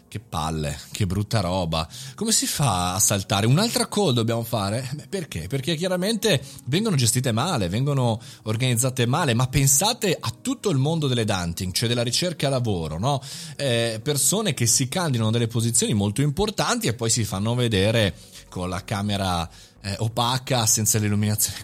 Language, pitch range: Italian, 105-145 Hz